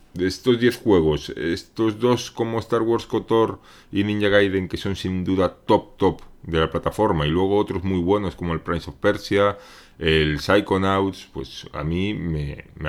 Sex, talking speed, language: male, 180 wpm, Spanish